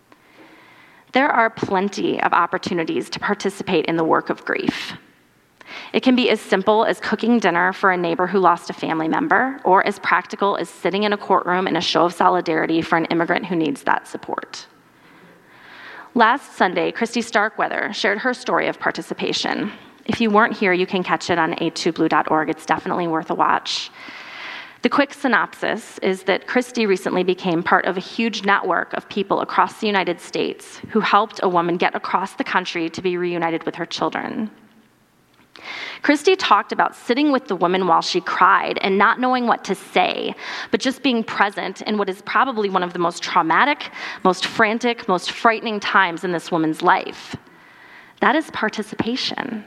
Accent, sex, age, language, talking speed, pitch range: American, female, 30-49, English, 175 wpm, 175-230 Hz